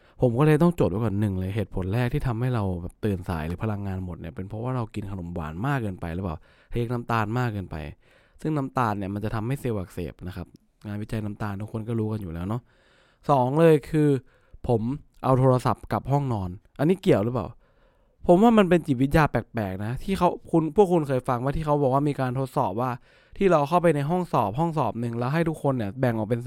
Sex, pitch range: male, 110-145 Hz